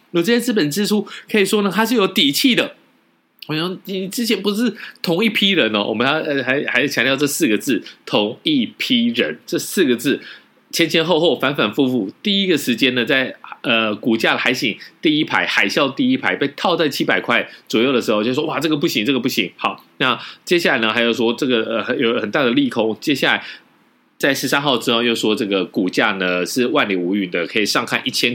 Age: 20-39